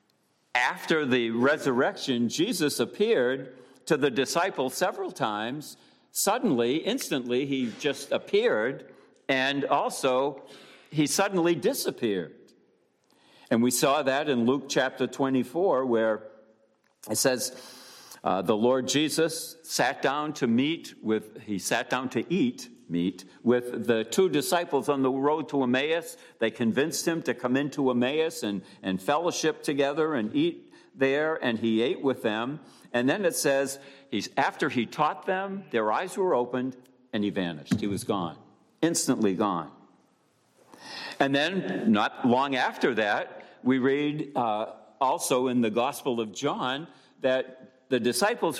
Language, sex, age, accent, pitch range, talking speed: English, male, 60-79, American, 125-160 Hz, 140 wpm